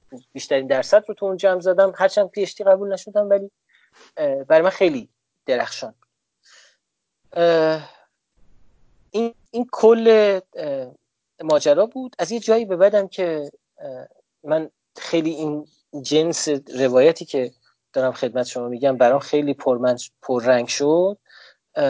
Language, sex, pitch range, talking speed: Persian, male, 130-190 Hz, 110 wpm